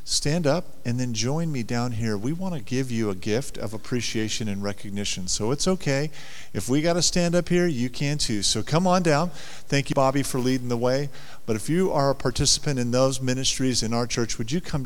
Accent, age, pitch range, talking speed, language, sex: American, 40-59, 115-145 Hz, 235 wpm, English, male